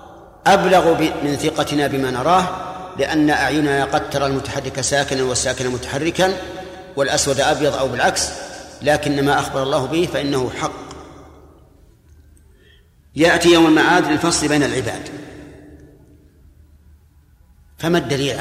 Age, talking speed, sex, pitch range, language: 50-69, 105 wpm, male, 125-165 Hz, Arabic